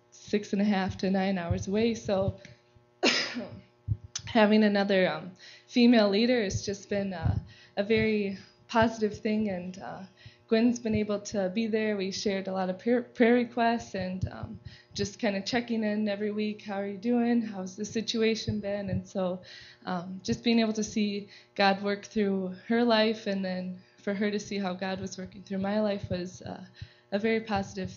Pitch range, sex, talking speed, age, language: 190-220 Hz, female, 180 wpm, 20-39, English